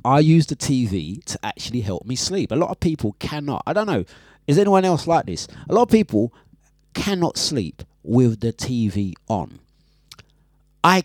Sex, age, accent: male, 30-49, British